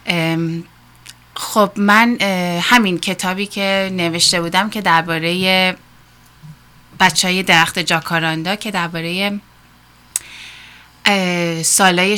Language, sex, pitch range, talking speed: Persian, female, 170-205 Hz, 80 wpm